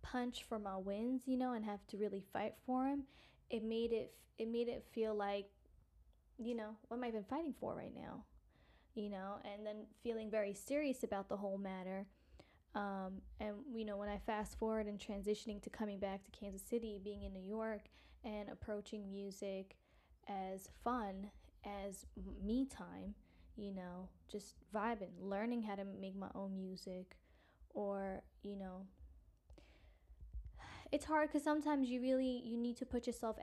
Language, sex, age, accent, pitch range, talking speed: English, female, 10-29, American, 195-225 Hz, 170 wpm